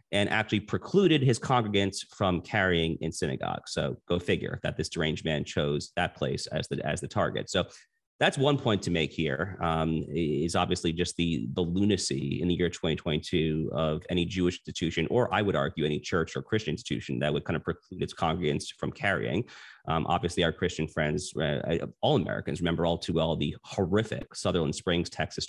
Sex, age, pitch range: male, 30-49, 80-95 Hz